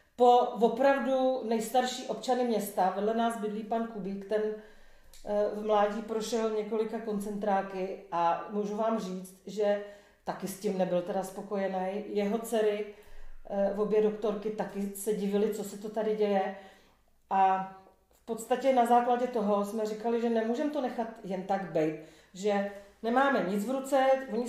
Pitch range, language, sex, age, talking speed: 200-235 Hz, Czech, female, 40-59, 145 wpm